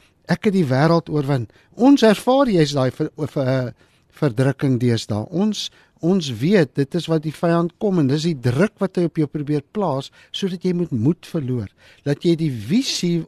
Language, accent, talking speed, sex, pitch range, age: English, Dutch, 195 wpm, male, 125-185 Hz, 50-69